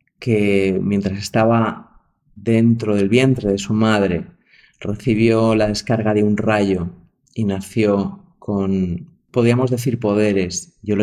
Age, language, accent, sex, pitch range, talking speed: 30-49, Spanish, Spanish, male, 105-125 Hz, 125 wpm